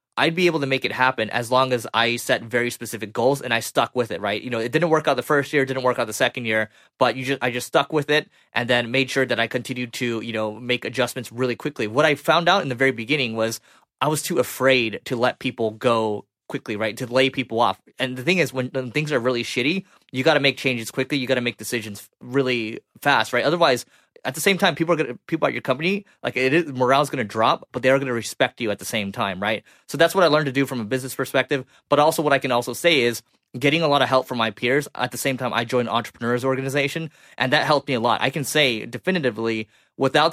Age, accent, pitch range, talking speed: 20-39, American, 115-140 Hz, 275 wpm